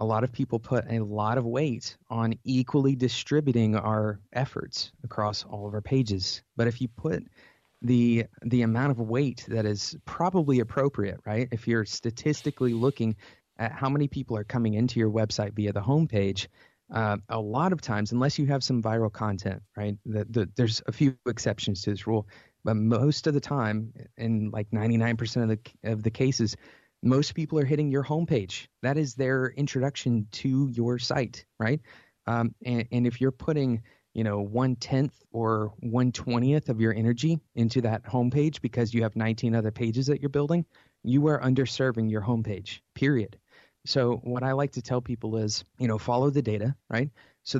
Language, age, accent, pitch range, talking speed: English, 30-49, American, 110-135 Hz, 185 wpm